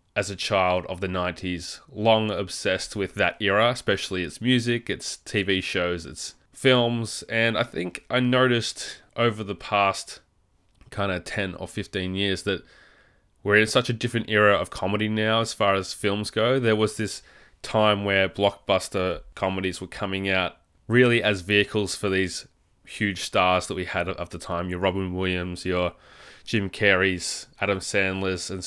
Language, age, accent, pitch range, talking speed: English, 20-39, Australian, 90-110 Hz, 165 wpm